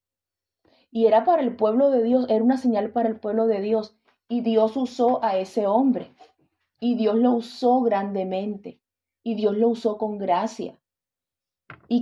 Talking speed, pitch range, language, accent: 165 wpm, 185-230 Hz, English, Venezuelan